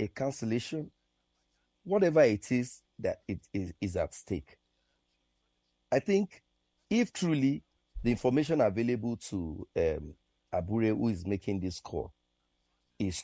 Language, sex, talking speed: English, male, 120 wpm